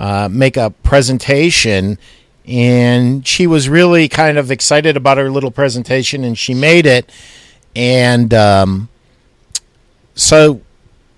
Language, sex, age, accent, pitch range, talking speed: English, male, 50-69, American, 120-175 Hz, 120 wpm